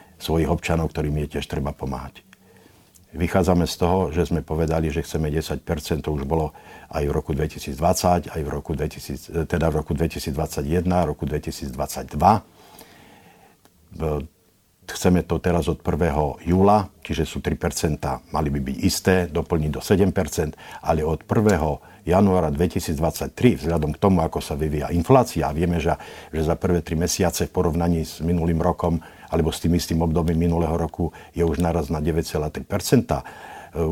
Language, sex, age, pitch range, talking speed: Slovak, male, 50-69, 80-90 Hz, 150 wpm